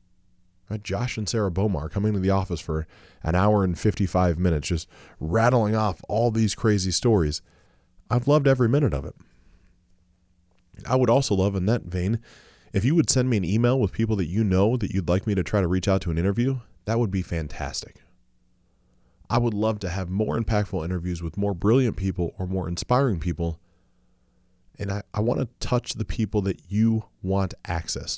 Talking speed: 190 wpm